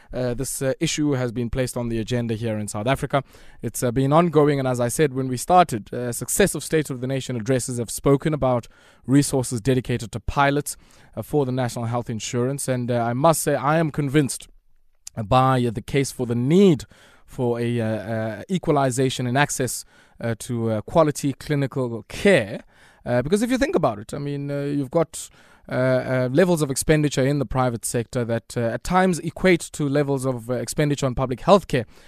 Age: 20-39